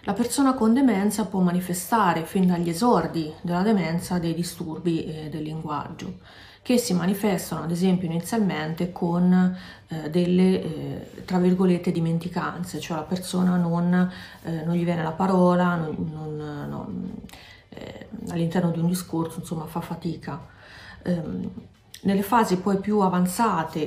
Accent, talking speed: native, 130 wpm